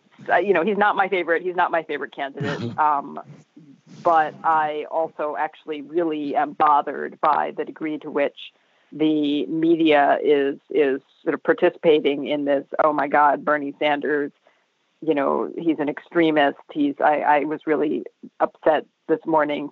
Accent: American